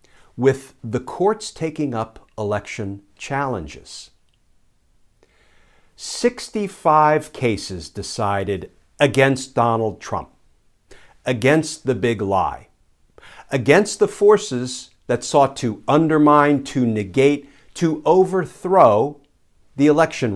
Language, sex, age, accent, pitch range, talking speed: English, male, 50-69, American, 105-150 Hz, 90 wpm